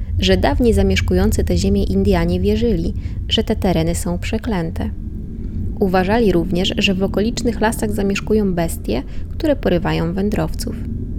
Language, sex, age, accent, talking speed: Polish, female, 20-39, native, 125 wpm